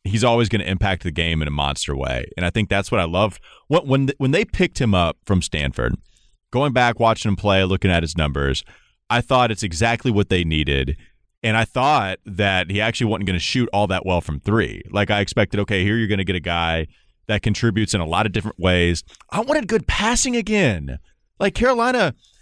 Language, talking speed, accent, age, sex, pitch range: English, 220 wpm, American, 30-49, male, 95-125 Hz